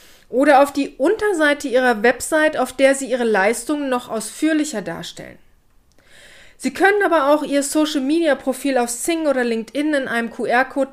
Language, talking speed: German, 150 wpm